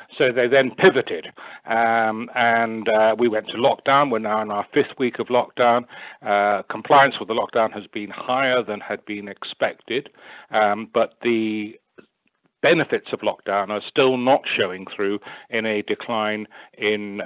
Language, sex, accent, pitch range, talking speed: English, male, British, 105-120 Hz, 160 wpm